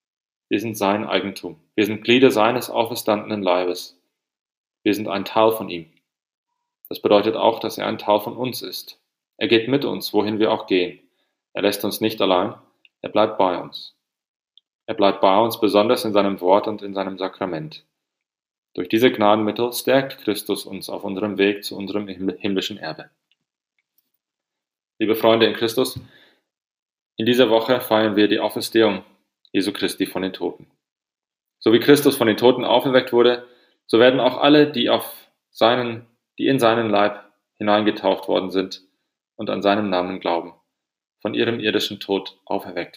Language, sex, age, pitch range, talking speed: English, male, 30-49, 95-115 Hz, 160 wpm